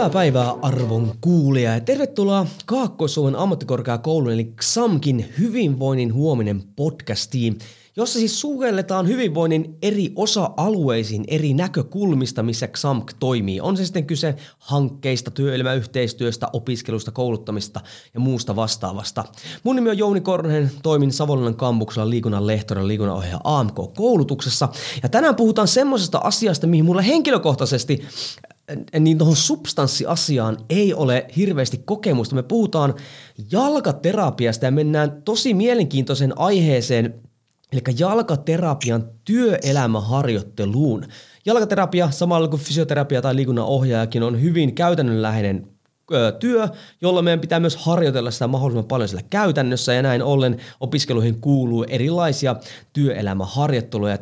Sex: male